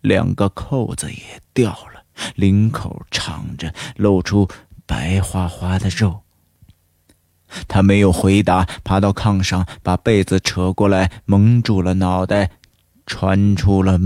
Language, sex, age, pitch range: Chinese, male, 30-49, 85-105 Hz